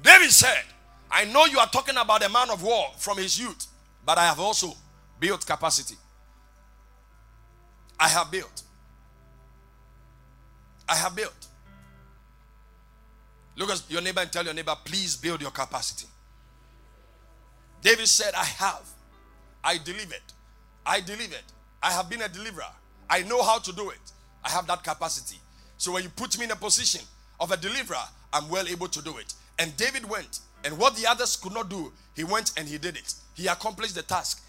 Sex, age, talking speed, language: male, 50-69, 170 wpm, English